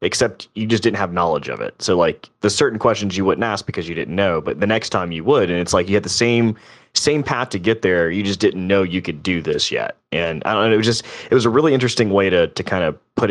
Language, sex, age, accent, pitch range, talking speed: English, male, 20-39, American, 85-110 Hz, 295 wpm